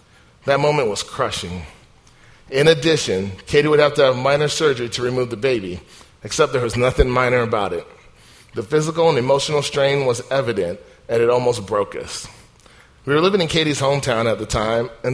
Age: 40-59